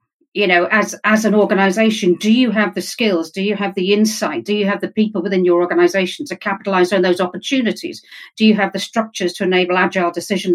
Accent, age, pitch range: British, 50-69, 180-220 Hz